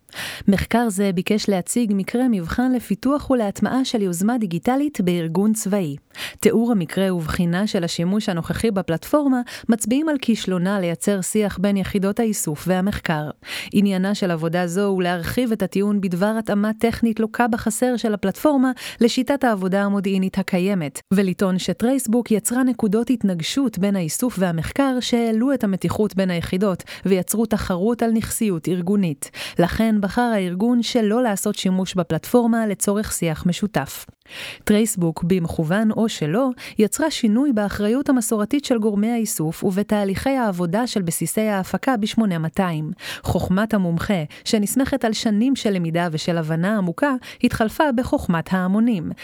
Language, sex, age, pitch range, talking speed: Hebrew, female, 30-49, 180-230 Hz, 130 wpm